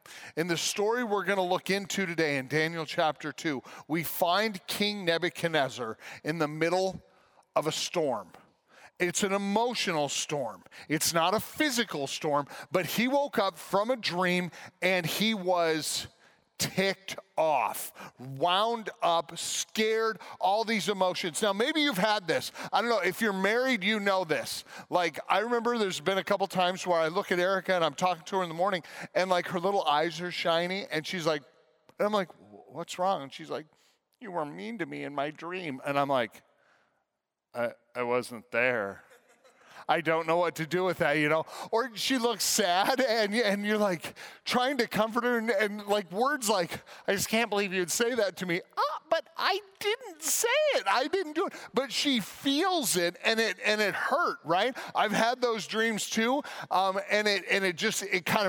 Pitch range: 170-225 Hz